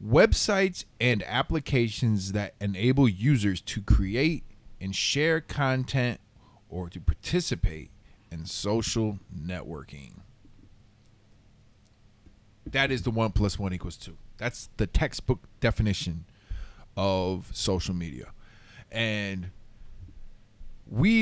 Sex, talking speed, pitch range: male, 95 wpm, 100-130 Hz